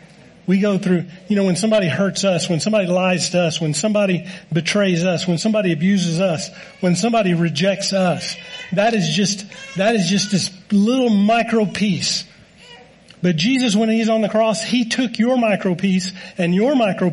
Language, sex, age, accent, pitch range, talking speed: English, male, 40-59, American, 160-200 Hz, 180 wpm